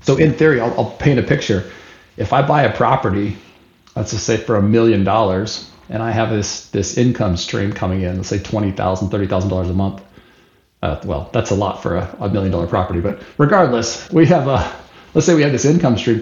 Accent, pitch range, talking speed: American, 95-120 Hz, 215 wpm